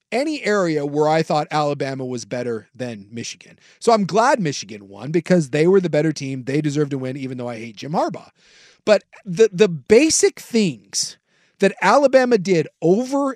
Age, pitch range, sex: 40-59, 165-225 Hz, male